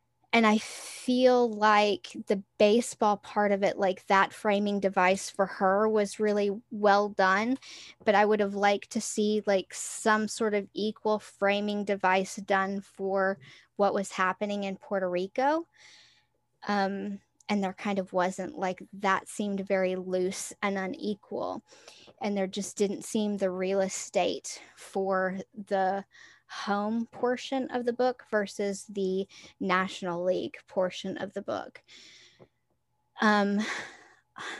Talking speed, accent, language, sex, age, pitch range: 135 wpm, American, English, female, 10-29, 195-220 Hz